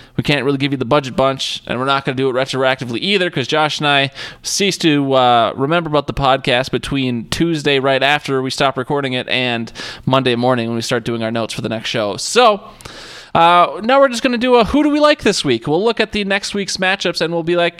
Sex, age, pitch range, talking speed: male, 20-39, 140-190 Hz, 255 wpm